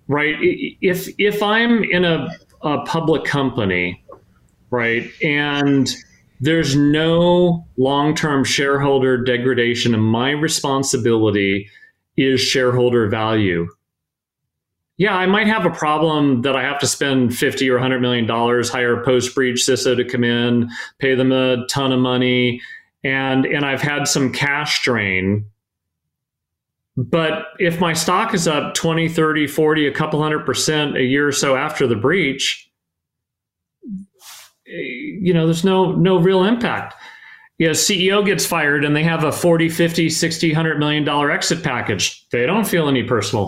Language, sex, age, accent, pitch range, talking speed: English, male, 40-59, American, 125-165 Hz, 150 wpm